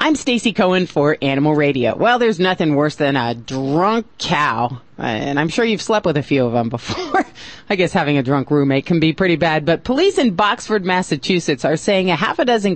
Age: 40-59